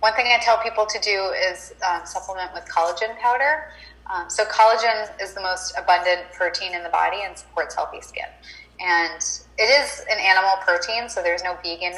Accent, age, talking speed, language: American, 20-39, 190 wpm, English